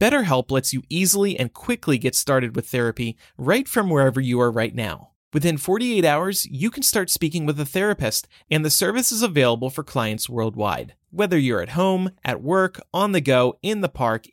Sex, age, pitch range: male, 30-49, 120-180 Hz